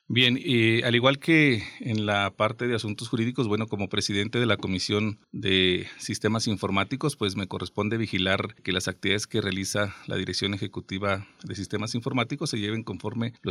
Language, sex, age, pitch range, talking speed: Spanish, male, 40-59, 95-115 Hz, 180 wpm